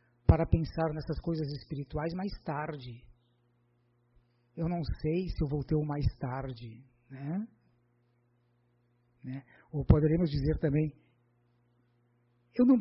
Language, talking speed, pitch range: Portuguese, 115 wpm, 120-175 Hz